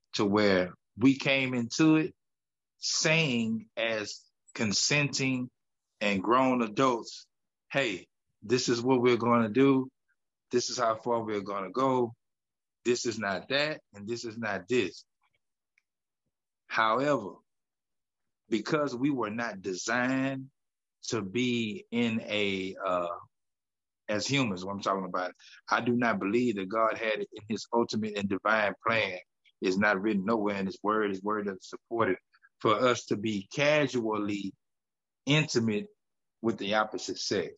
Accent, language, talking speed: American, English, 140 wpm